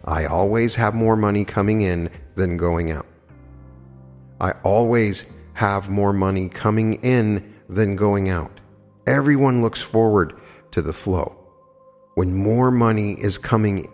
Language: English